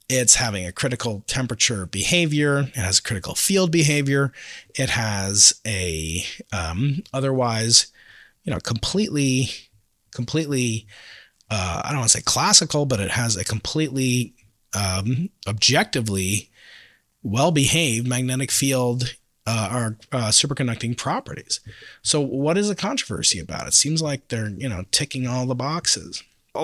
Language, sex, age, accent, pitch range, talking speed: English, male, 30-49, American, 110-145 Hz, 135 wpm